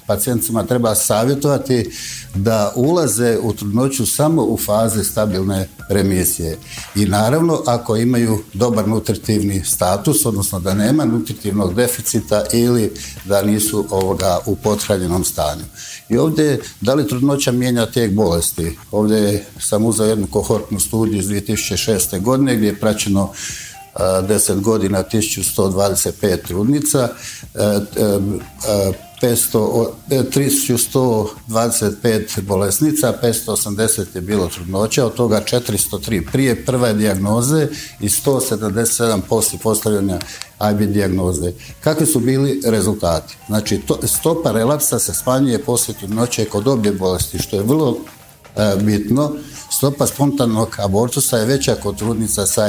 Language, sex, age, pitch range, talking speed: Croatian, male, 60-79, 100-125 Hz, 120 wpm